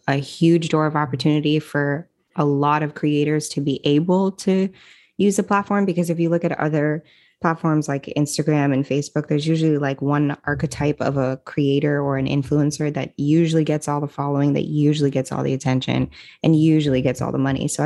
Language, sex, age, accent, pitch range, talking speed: English, female, 20-39, American, 140-165 Hz, 195 wpm